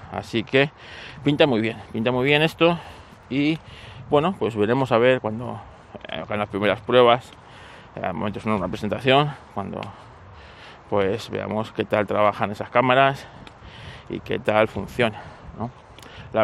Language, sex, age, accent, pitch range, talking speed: Spanish, male, 20-39, Spanish, 100-120 Hz, 140 wpm